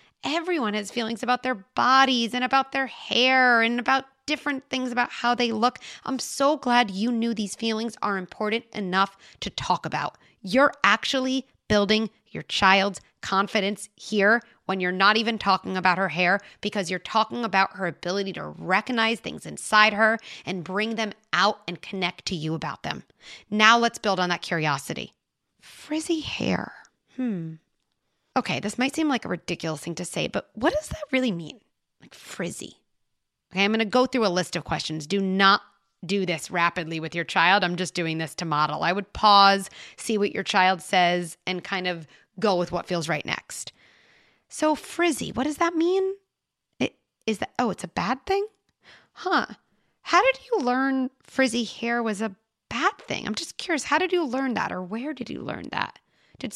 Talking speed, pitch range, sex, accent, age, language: 185 wpm, 185-255 Hz, female, American, 30-49, English